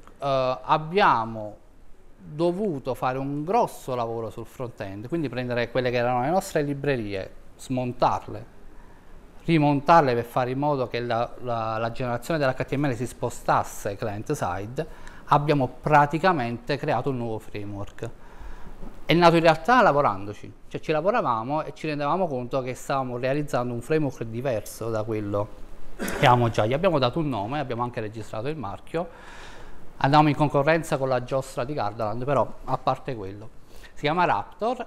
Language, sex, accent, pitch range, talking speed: Italian, male, native, 115-150 Hz, 150 wpm